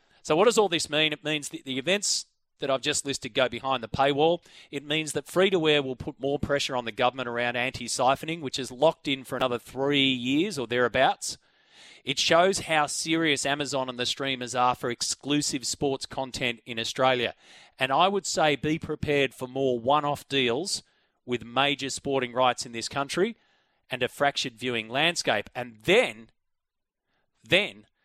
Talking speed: 180 wpm